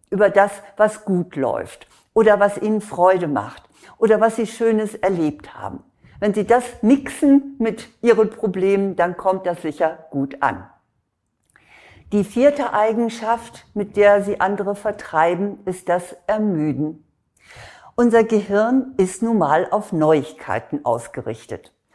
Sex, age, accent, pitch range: female, 60-79, German, 185-220 Hz